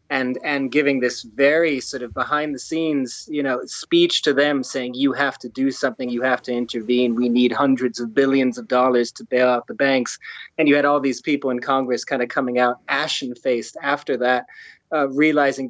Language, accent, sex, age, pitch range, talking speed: English, American, male, 30-49, 135-160 Hz, 205 wpm